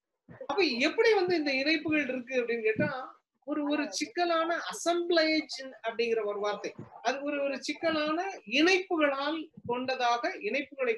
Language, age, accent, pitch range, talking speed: Tamil, 30-49, native, 235-315 Hz, 115 wpm